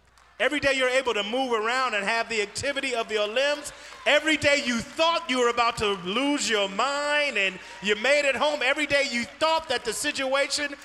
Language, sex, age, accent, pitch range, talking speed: English, male, 30-49, American, 175-265 Hz, 205 wpm